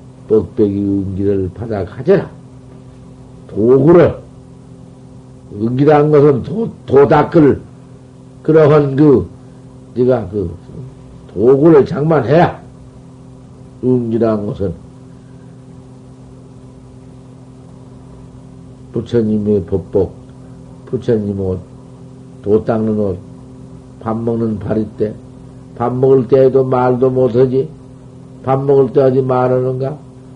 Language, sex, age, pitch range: Korean, male, 60-79, 125-140 Hz